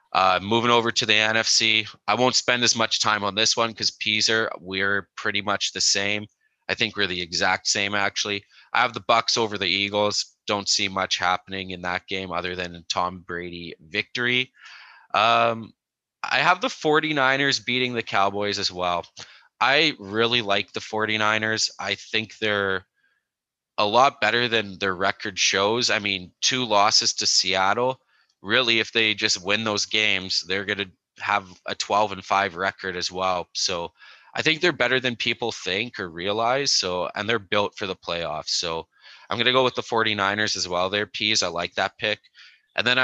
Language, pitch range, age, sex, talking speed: English, 95-115 Hz, 20-39, male, 180 wpm